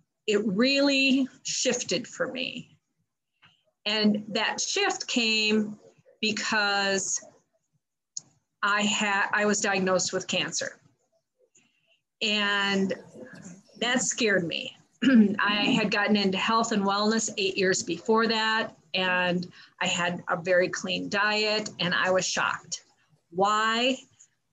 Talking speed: 110 wpm